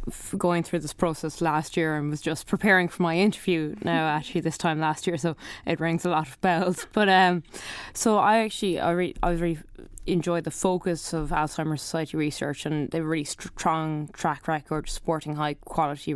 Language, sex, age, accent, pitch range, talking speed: English, female, 20-39, Irish, 150-170 Hz, 190 wpm